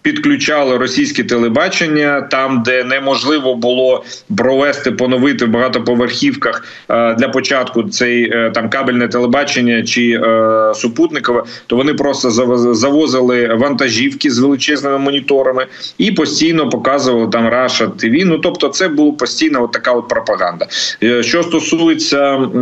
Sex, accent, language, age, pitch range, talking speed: male, native, Ukrainian, 30-49, 120-145 Hz, 115 wpm